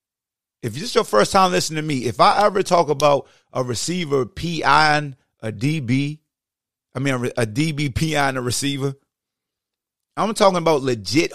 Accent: American